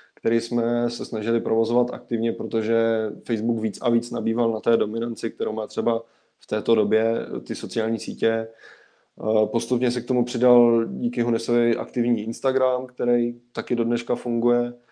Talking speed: 150 wpm